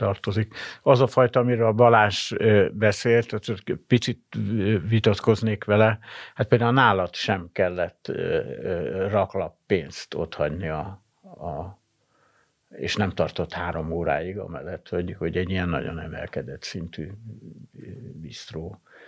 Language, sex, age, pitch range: Hungarian, male, 60-79, 85-110 Hz